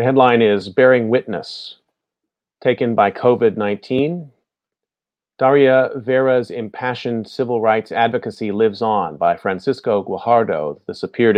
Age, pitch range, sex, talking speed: 40-59, 105-125 Hz, male, 110 wpm